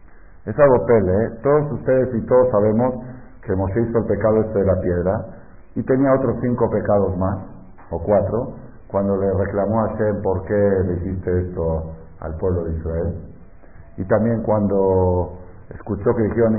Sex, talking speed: male, 165 wpm